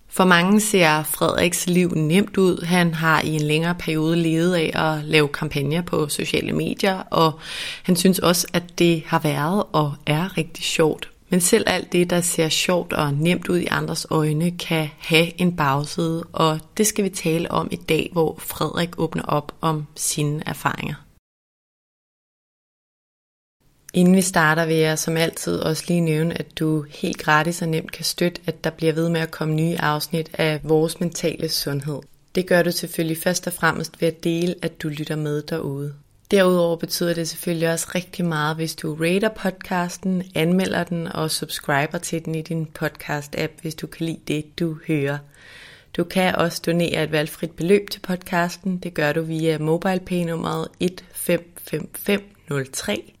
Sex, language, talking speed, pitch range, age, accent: female, Danish, 175 wpm, 155-175 Hz, 30-49, native